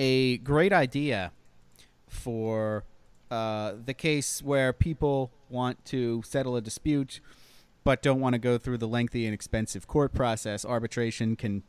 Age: 30-49